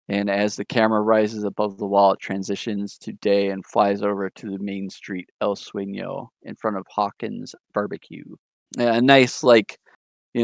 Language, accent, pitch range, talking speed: English, American, 100-115 Hz, 170 wpm